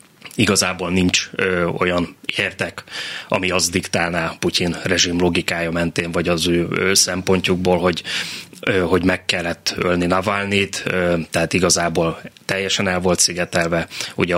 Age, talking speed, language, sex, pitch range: 20-39, 125 wpm, Hungarian, male, 90-95 Hz